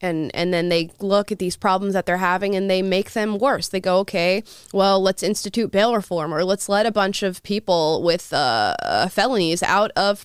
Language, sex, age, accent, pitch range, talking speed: English, female, 20-39, American, 195-275 Hz, 215 wpm